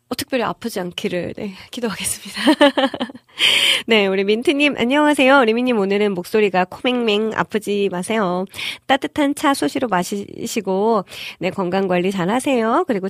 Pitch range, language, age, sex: 180-235 Hz, Korean, 20-39, female